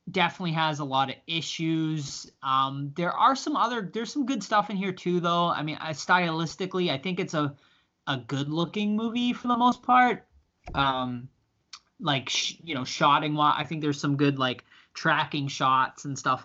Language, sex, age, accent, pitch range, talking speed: English, male, 20-39, American, 125-170 Hz, 190 wpm